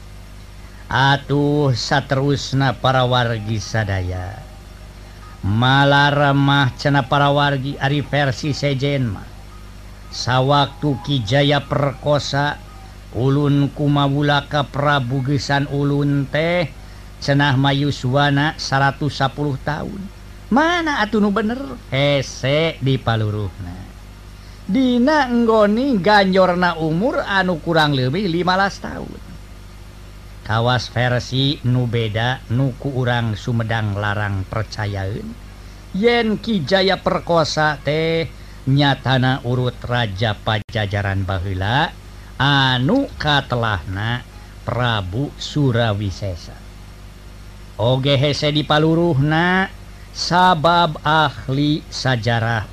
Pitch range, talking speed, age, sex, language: 100-145 Hz, 80 wpm, 50-69, male, Indonesian